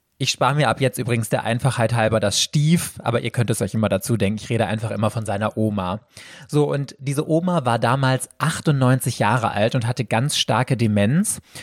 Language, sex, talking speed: German, male, 205 wpm